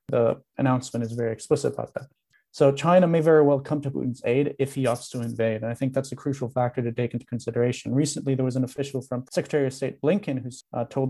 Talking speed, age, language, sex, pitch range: 240 wpm, 30-49, English, male, 120-135 Hz